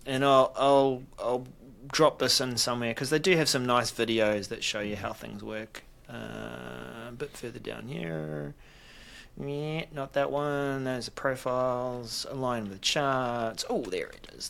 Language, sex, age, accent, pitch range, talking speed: English, male, 30-49, Australian, 105-130 Hz, 170 wpm